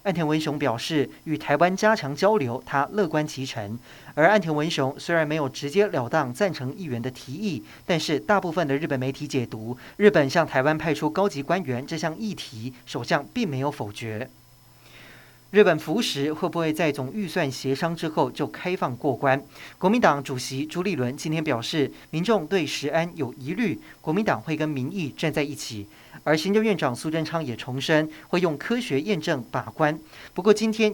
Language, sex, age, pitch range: Chinese, male, 40-59, 135-170 Hz